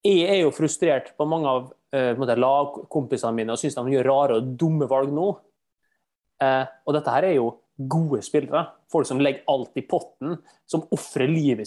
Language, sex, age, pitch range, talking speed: English, male, 20-39, 135-170 Hz, 190 wpm